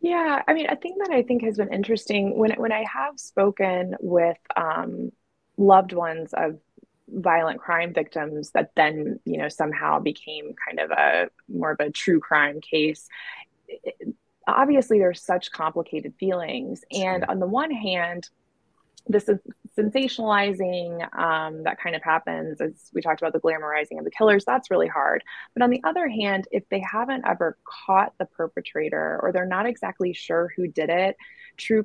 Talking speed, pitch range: 170 wpm, 165-225 Hz